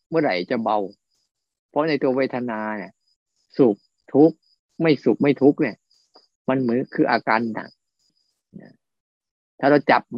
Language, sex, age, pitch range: Thai, male, 20-39, 110-130 Hz